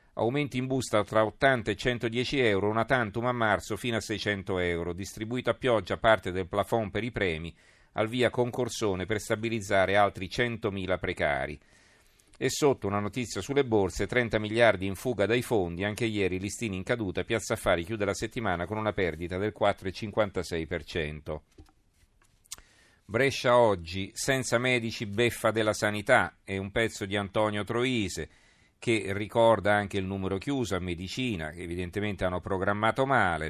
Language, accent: Italian, native